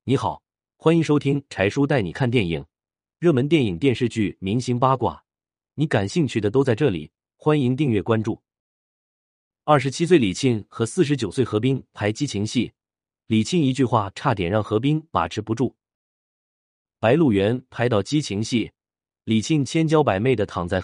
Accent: native